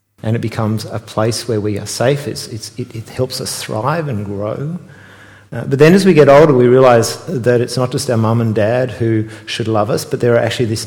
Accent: Australian